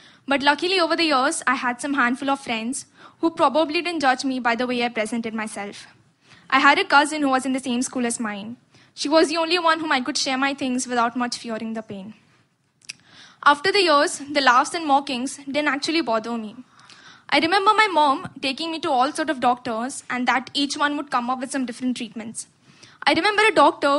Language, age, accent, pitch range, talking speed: Hindi, 20-39, native, 245-295 Hz, 220 wpm